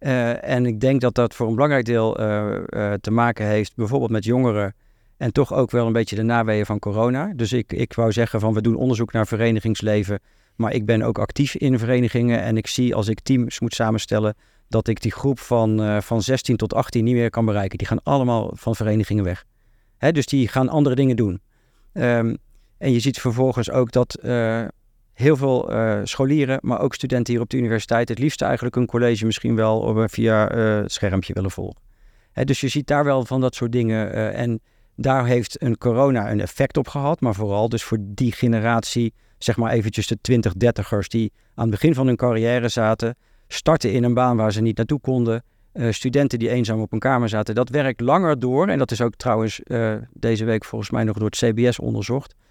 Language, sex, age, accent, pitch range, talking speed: Dutch, male, 50-69, Dutch, 110-125 Hz, 215 wpm